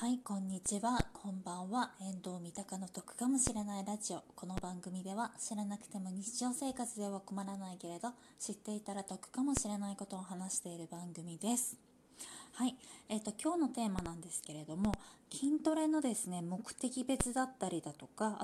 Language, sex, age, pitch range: Japanese, female, 20-39, 175-240 Hz